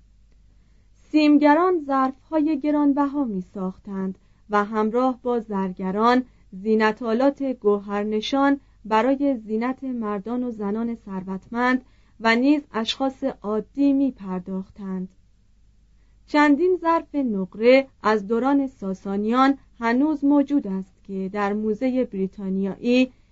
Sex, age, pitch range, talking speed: female, 40-59, 195-270 Hz, 85 wpm